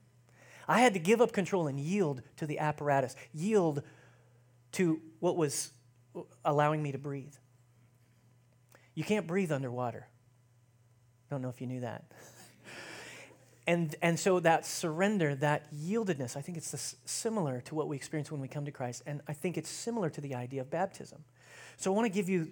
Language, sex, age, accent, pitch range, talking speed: English, male, 30-49, American, 125-165 Hz, 175 wpm